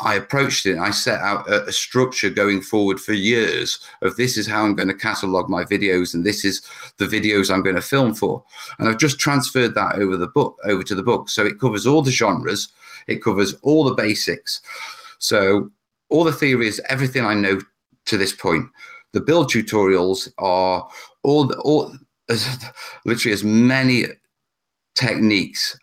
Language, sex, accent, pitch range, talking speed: English, male, British, 95-135 Hz, 175 wpm